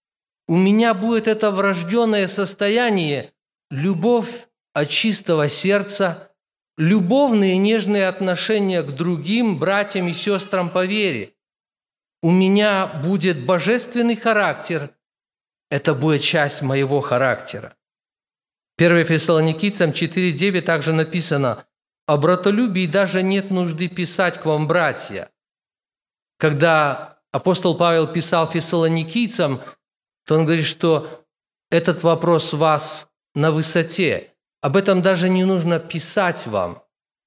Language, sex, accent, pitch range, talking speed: Russian, male, native, 165-210 Hz, 105 wpm